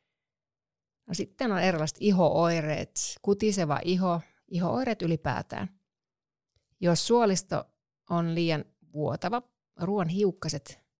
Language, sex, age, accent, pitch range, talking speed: Finnish, female, 30-49, native, 160-200 Hz, 85 wpm